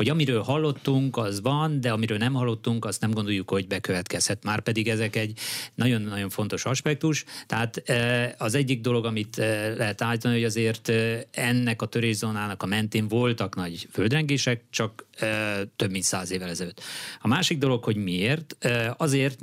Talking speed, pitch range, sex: 160 wpm, 105-125 Hz, male